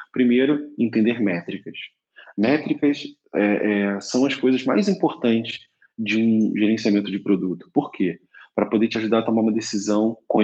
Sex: male